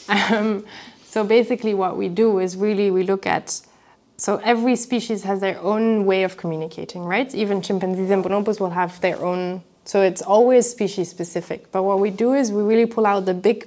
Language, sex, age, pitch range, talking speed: English, female, 20-39, 180-210 Hz, 195 wpm